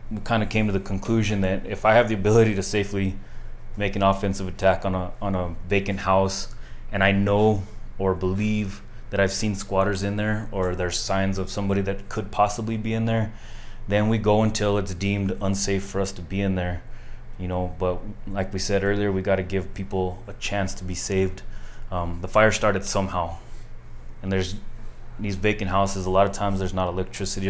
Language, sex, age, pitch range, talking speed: English, male, 20-39, 95-105 Hz, 205 wpm